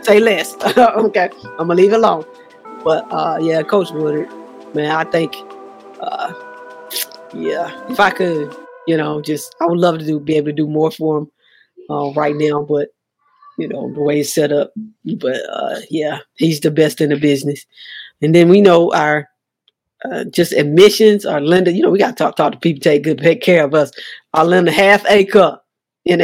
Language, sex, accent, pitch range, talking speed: English, female, American, 150-195 Hz, 200 wpm